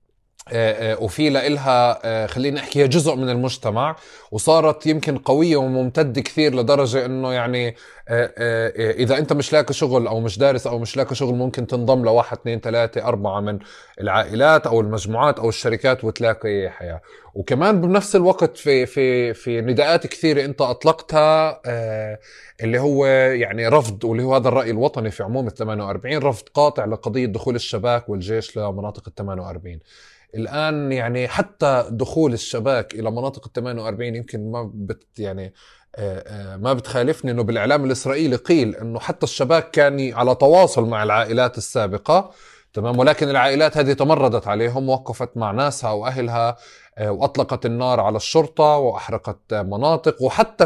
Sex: male